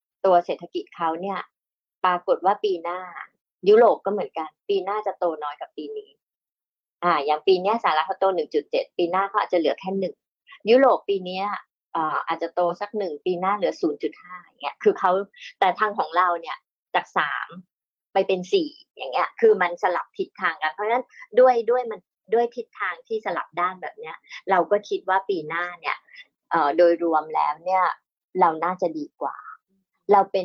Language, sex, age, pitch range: Thai, male, 30-49, 175-235 Hz